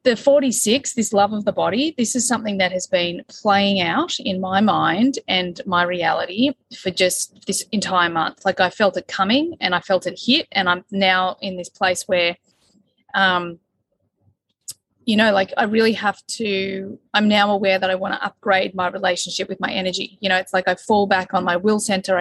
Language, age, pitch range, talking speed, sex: English, 30-49, 185-235 Hz, 205 wpm, female